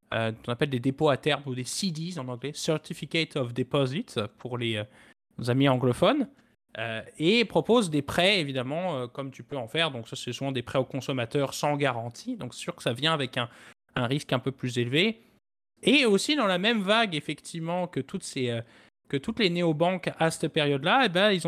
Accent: French